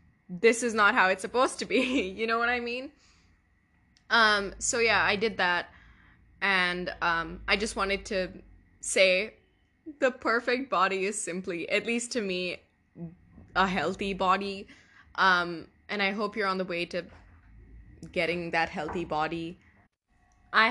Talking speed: 150 wpm